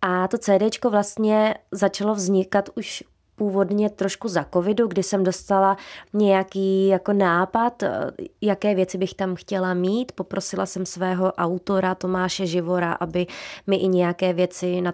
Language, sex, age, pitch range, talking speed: Czech, female, 20-39, 185-210 Hz, 135 wpm